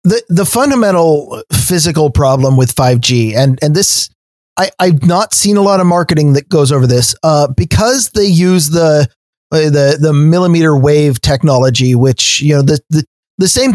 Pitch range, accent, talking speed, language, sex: 135-170 Hz, American, 170 wpm, English, male